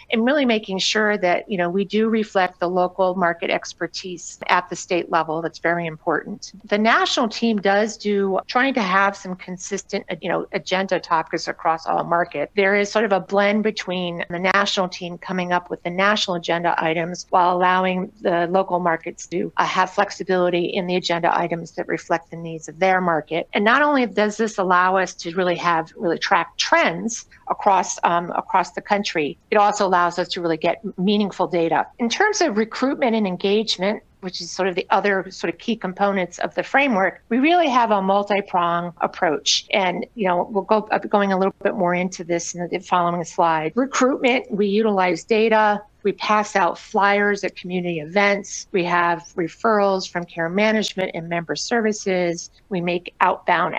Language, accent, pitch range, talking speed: English, American, 175-205 Hz, 185 wpm